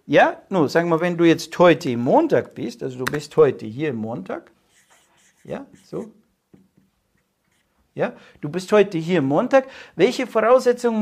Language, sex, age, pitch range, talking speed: German, male, 60-79, 155-240 Hz, 140 wpm